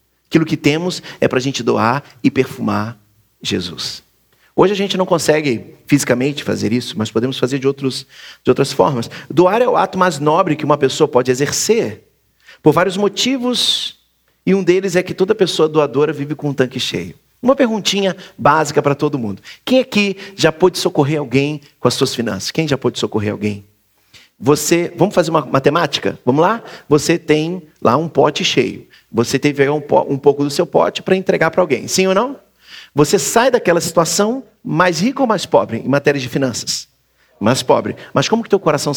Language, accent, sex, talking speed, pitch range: Portuguese, Brazilian, male, 185 wpm, 135-180 Hz